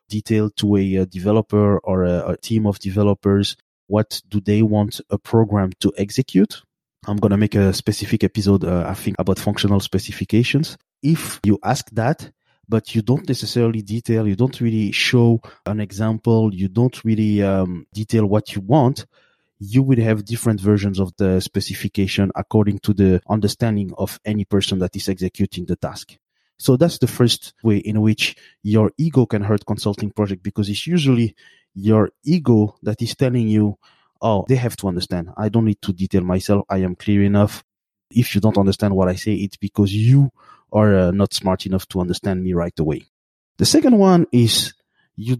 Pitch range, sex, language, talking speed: 100-115 Hz, male, English, 180 wpm